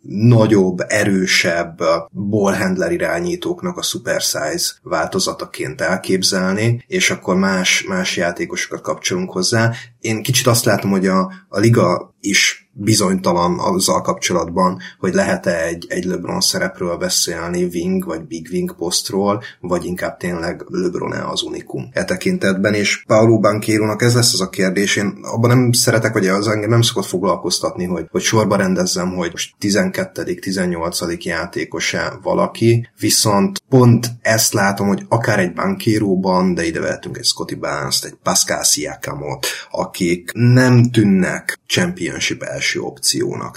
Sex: male